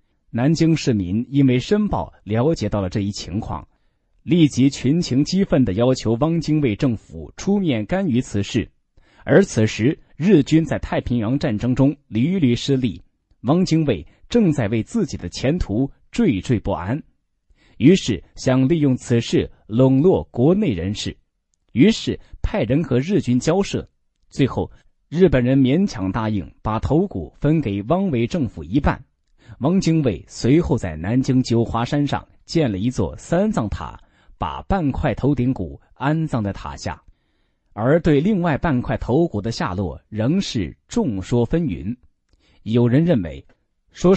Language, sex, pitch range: Chinese, male, 105-155 Hz